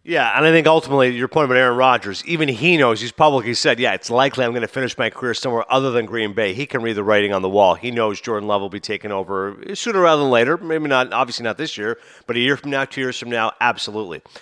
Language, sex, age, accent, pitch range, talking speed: English, male, 40-59, American, 120-160 Hz, 275 wpm